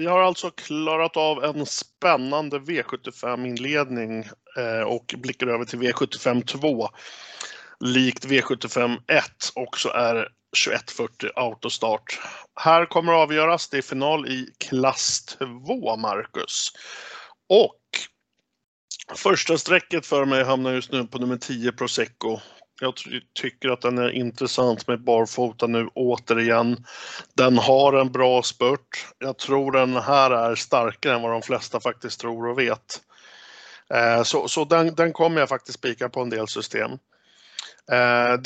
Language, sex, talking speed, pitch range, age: Swedish, male, 135 wpm, 120-155 Hz, 50-69